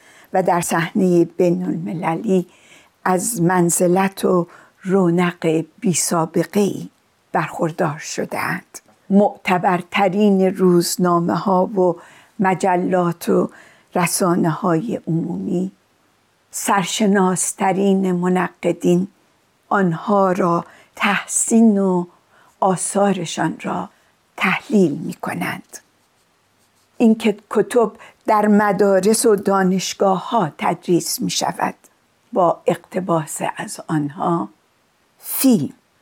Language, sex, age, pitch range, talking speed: Persian, female, 60-79, 175-205 Hz, 80 wpm